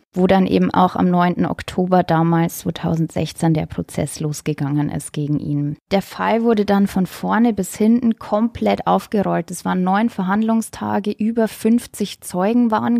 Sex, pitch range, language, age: female, 175-215 Hz, German, 20-39